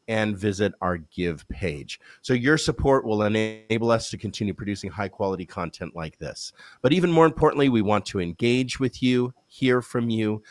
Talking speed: 185 wpm